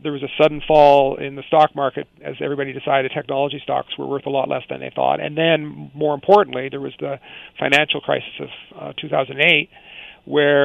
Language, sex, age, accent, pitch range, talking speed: English, male, 40-59, American, 135-160 Hz, 195 wpm